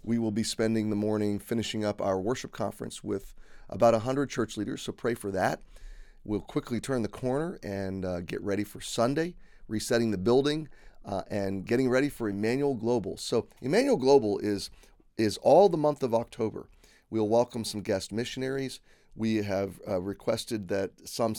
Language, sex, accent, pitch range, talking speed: English, male, American, 100-115 Hz, 175 wpm